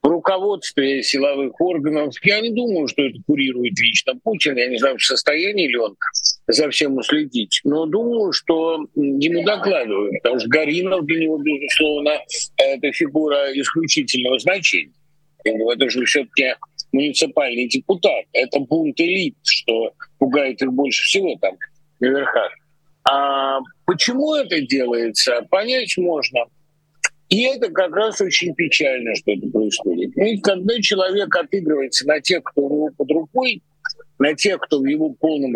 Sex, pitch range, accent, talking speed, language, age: male, 145-205 Hz, native, 140 wpm, Russian, 50-69